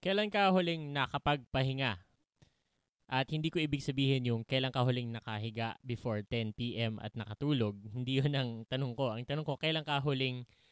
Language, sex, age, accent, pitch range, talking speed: English, male, 20-39, Filipino, 125-165 Hz, 145 wpm